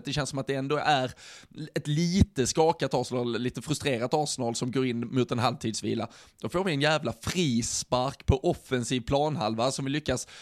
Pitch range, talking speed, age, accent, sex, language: 120-155 Hz, 185 wpm, 20-39, native, male, Swedish